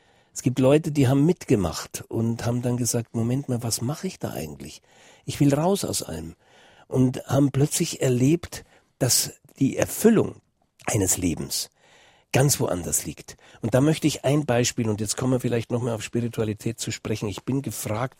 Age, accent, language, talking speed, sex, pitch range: 60-79, German, German, 175 wpm, male, 110-140 Hz